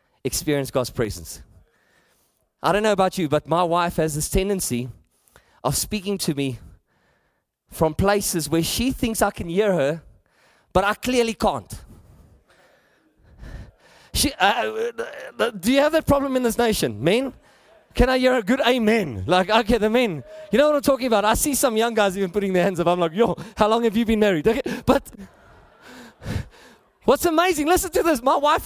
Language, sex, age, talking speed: English, male, 30-49, 180 wpm